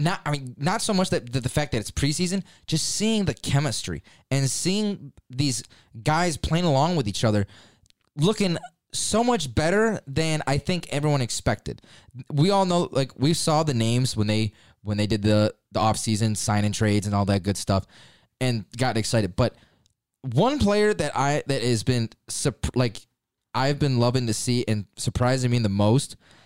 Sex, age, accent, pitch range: male, 20-39, American, 115-160 Hz